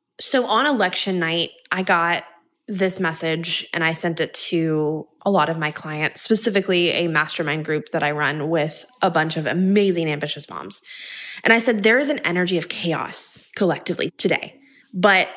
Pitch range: 170-220 Hz